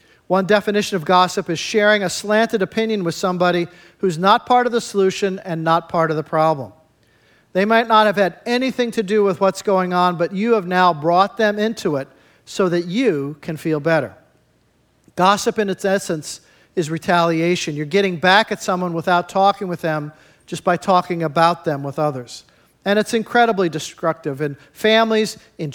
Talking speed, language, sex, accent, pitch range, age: 180 wpm, English, male, American, 155-200 Hz, 50-69